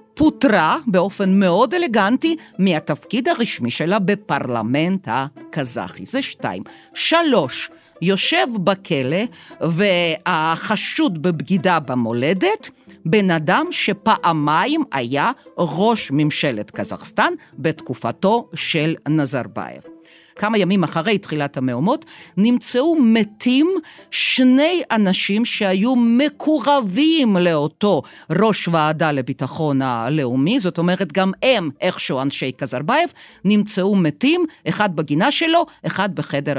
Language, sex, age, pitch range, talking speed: Hebrew, female, 50-69, 145-230 Hz, 95 wpm